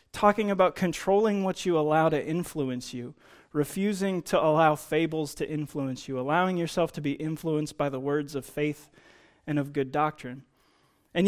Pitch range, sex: 145-175 Hz, male